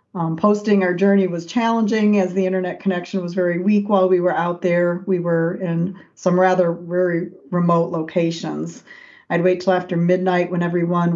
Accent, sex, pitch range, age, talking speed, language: American, female, 165-180 Hz, 40-59, 175 wpm, English